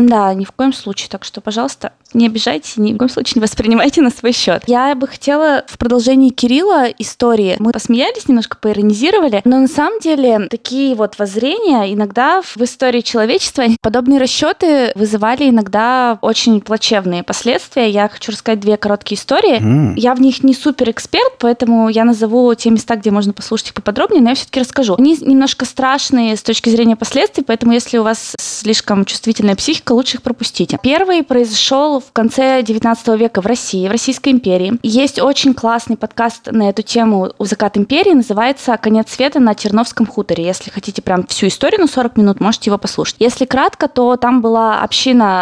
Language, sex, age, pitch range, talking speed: Russian, female, 20-39, 215-265 Hz, 180 wpm